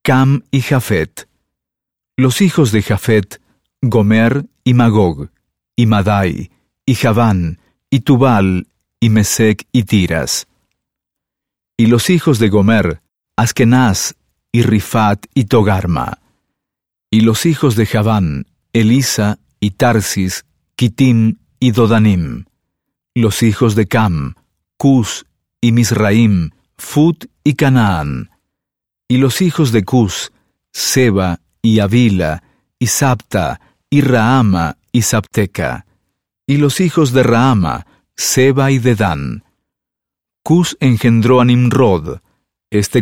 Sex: male